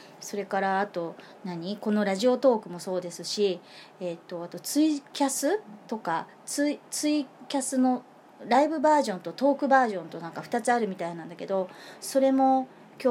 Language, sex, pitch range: Japanese, female, 180-245 Hz